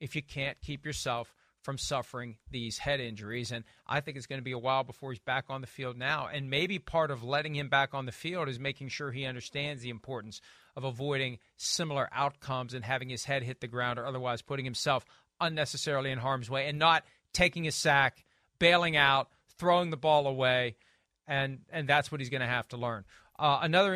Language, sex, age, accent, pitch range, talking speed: English, male, 40-59, American, 135-165 Hz, 215 wpm